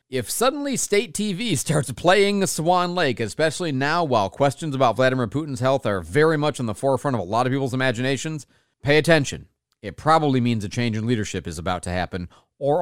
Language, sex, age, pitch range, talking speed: English, male, 40-59, 115-165 Hz, 200 wpm